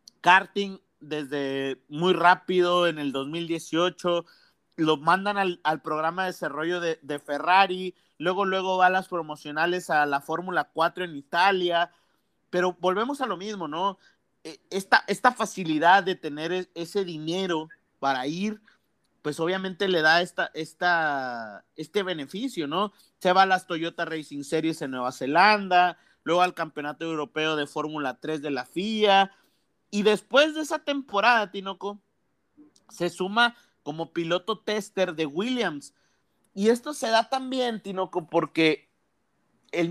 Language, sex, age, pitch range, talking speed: Spanish, male, 40-59, 160-200 Hz, 135 wpm